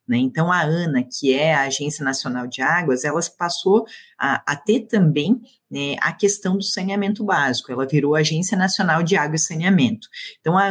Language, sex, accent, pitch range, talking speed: Portuguese, female, Brazilian, 145-205 Hz, 185 wpm